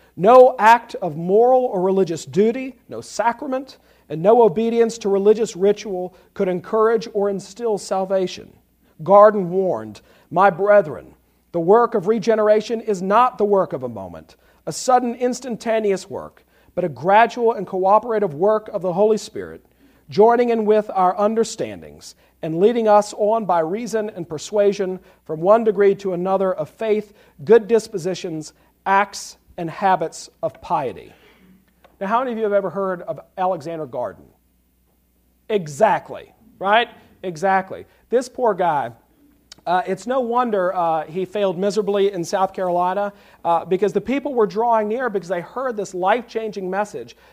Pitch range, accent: 180-220 Hz, American